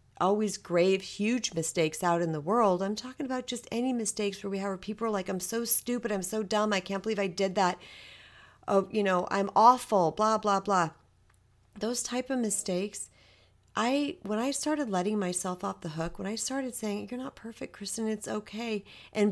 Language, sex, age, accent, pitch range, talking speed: English, female, 40-59, American, 170-230 Hz, 200 wpm